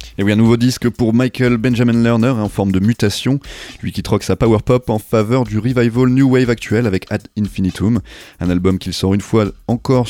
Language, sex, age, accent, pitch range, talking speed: French, male, 30-49, French, 100-130 Hz, 220 wpm